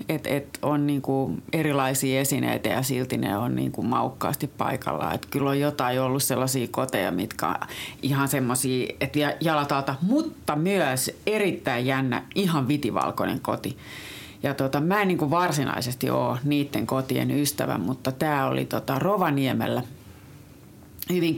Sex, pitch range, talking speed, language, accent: female, 130-160 Hz, 130 wpm, Finnish, native